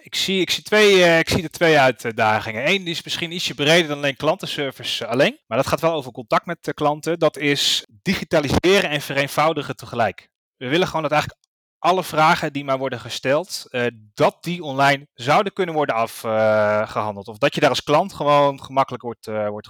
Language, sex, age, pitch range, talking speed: Dutch, male, 30-49, 125-155 Hz, 190 wpm